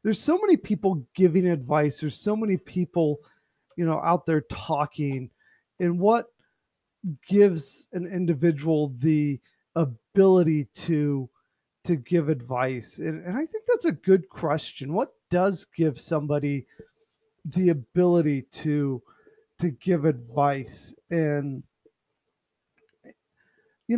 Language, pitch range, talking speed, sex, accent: English, 145-210 Hz, 115 wpm, male, American